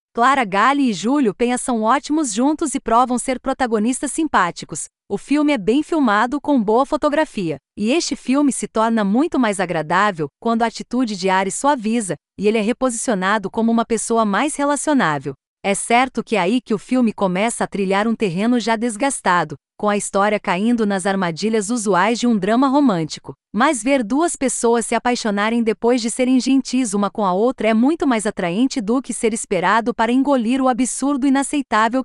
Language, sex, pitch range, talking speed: Portuguese, female, 210-265 Hz, 180 wpm